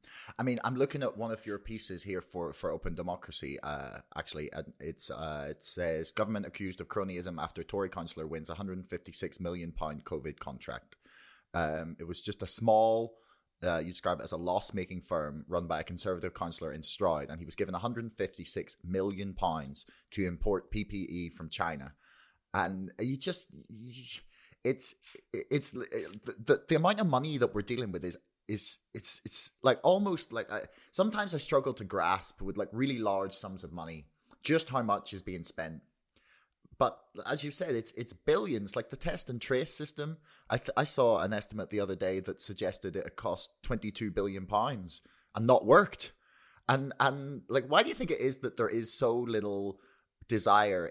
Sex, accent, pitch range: male, British, 90-125 Hz